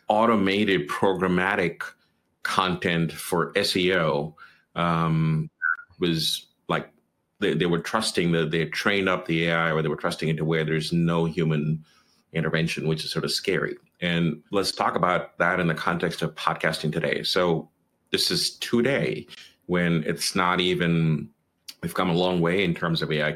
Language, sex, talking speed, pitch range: English, male, 160 wpm, 80-95 Hz